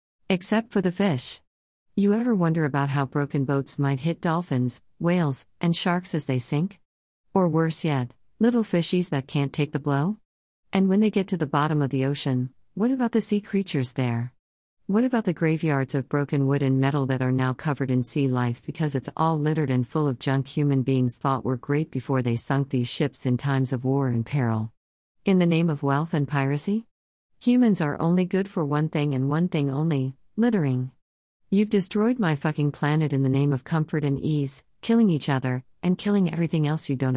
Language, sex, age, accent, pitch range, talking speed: English, female, 50-69, American, 130-170 Hz, 205 wpm